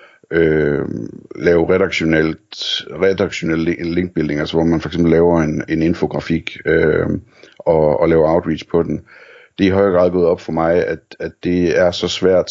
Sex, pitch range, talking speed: male, 80-90 Hz, 160 wpm